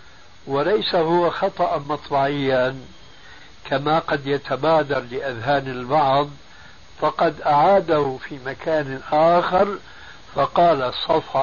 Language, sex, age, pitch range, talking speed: Arabic, male, 60-79, 130-165 Hz, 85 wpm